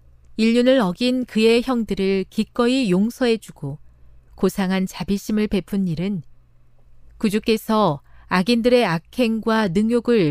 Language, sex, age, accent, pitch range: Korean, female, 40-59, native, 150-225 Hz